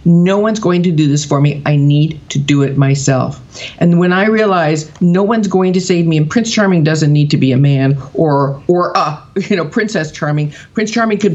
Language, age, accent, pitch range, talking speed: English, 50-69, American, 155-220 Hz, 225 wpm